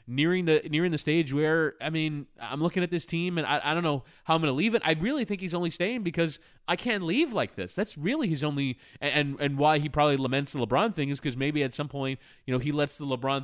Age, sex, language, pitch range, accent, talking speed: 20-39, male, English, 125-165 Hz, American, 270 wpm